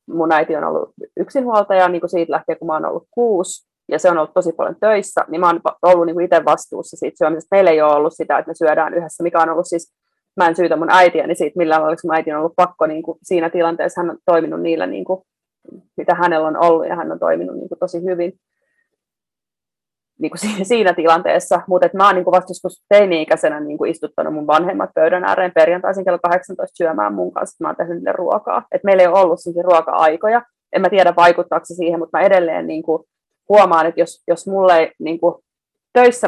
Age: 30-49